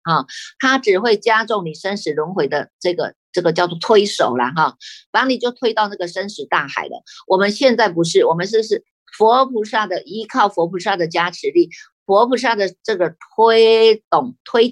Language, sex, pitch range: Chinese, female, 170-245 Hz